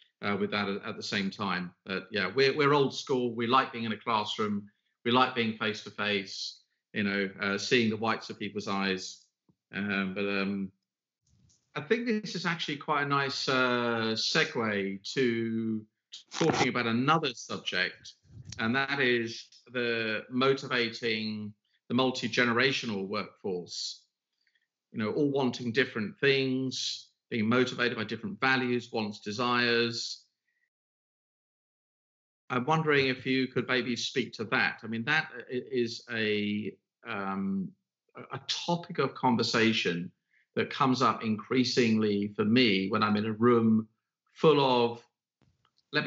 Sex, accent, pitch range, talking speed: male, British, 105-130 Hz, 140 wpm